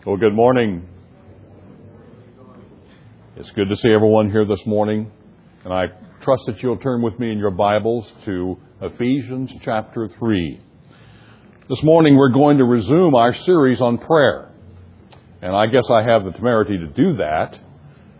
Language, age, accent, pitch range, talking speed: English, 60-79, American, 110-135 Hz, 150 wpm